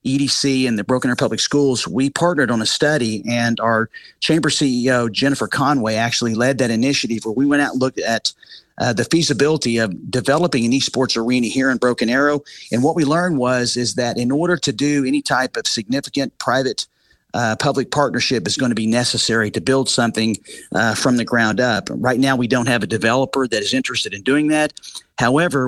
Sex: male